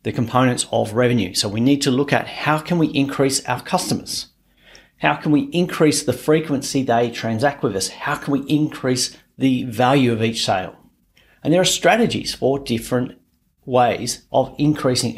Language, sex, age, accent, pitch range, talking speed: English, male, 40-59, Australian, 120-150 Hz, 175 wpm